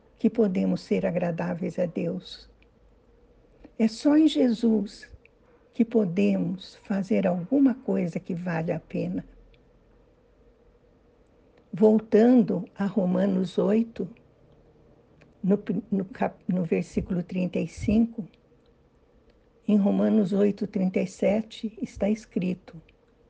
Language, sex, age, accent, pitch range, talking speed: Portuguese, female, 60-79, Brazilian, 185-230 Hz, 90 wpm